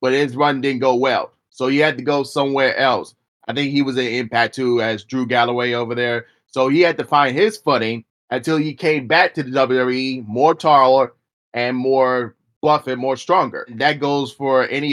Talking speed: 205 wpm